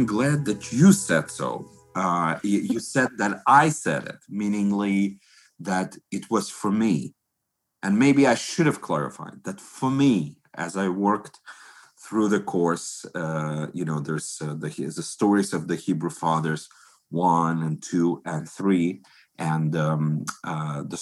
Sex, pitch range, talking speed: male, 85-110 Hz, 155 wpm